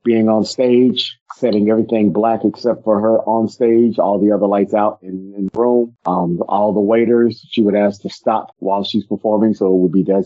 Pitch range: 95-110 Hz